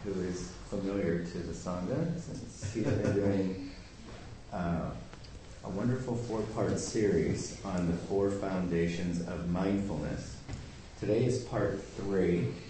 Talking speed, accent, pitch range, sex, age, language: 120 wpm, American, 90-105 Hz, male, 30-49, English